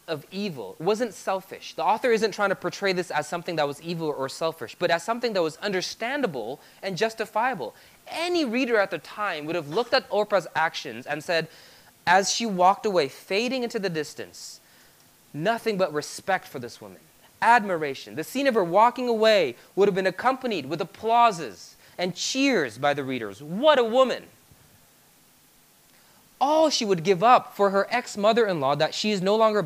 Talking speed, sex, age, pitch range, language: 180 wpm, male, 20-39, 145-215 Hz, English